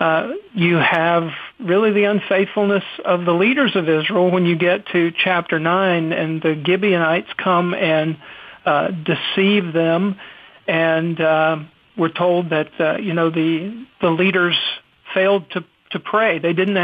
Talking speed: 150 wpm